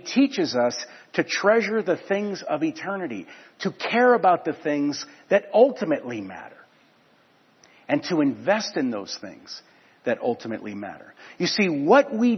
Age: 50-69